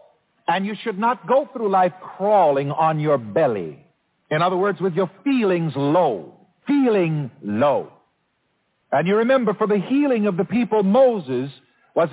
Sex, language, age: male, English, 50-69